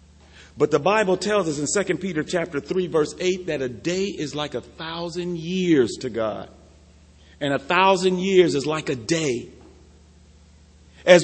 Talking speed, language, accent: 160 wpm, English, American